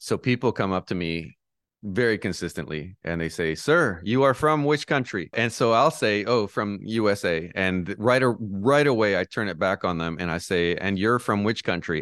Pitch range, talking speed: 90-115 Hz, 215 wpm